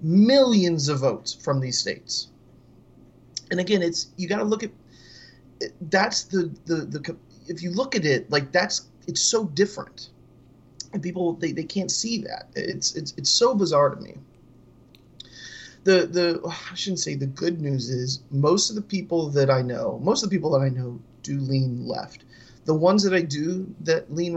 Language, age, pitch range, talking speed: English, 30-49, 130-175 Hz, 185 wpm